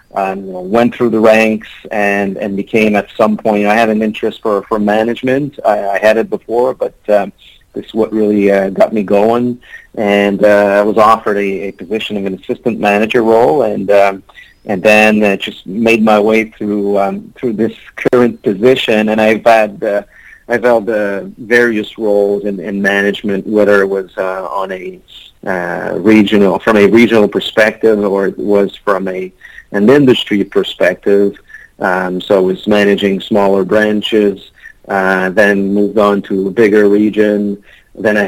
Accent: American